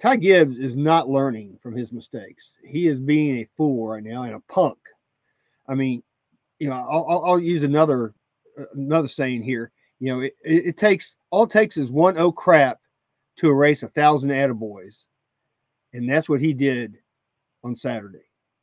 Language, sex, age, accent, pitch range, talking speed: English, male, 40-59, American, 130-165 Hz, 170 wpm